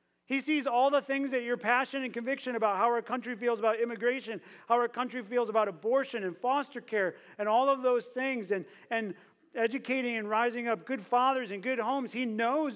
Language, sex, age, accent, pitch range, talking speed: English, male, 40-59, American, 175-245 Hz, 205 wpm